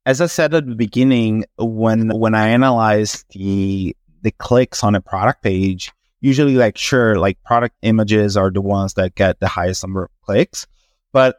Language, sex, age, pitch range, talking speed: English, male, 30-49, 105-140 Hz, 180 wpm